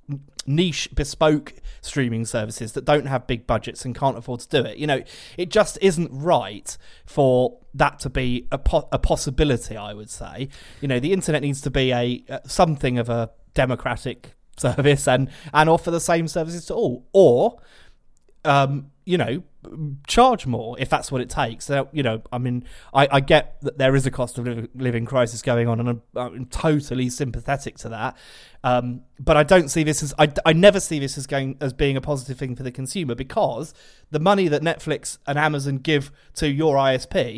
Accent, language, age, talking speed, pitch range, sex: British, English, 30-49, 195 wpm, 125-155 Hz, male